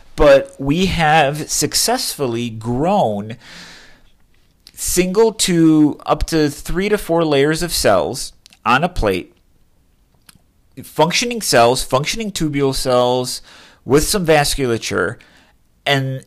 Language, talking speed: English, 100 wpm